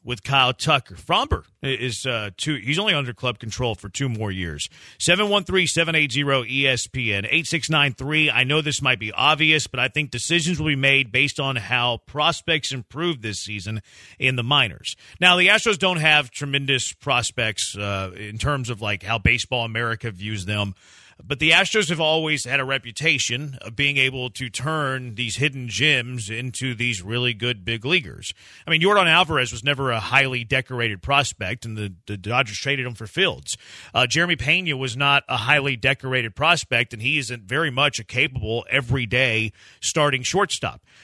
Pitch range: 120-150 Hz